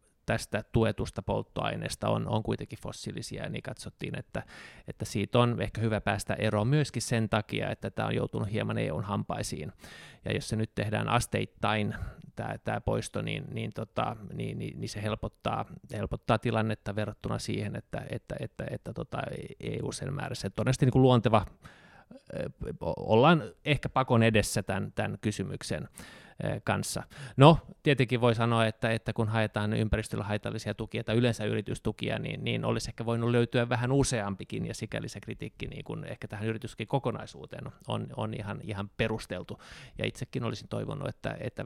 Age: 20-39